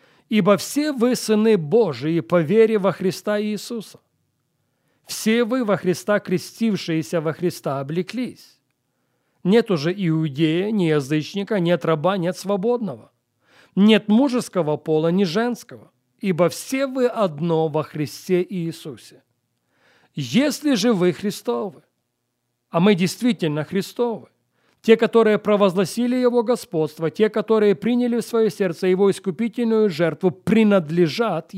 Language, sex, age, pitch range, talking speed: English, male, 40-59, 160-220 Hz, 120 wpm